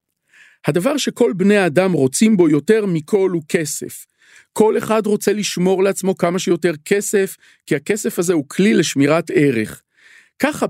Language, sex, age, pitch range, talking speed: Hebrew, male, 40-59, 150-210 Hz, 145 wpm